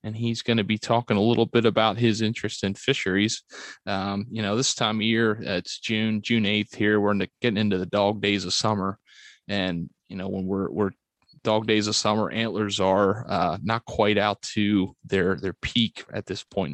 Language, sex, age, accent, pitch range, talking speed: English, male, 30-49, American, 100-115 Hz, 205 wpm